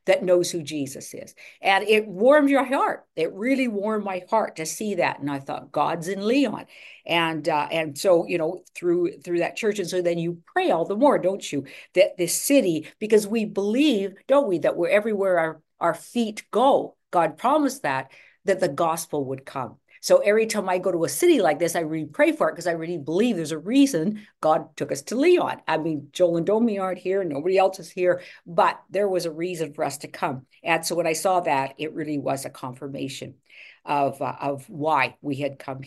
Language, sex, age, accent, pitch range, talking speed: English, female, 50-69, American, 150-210 Hz, 220 wpm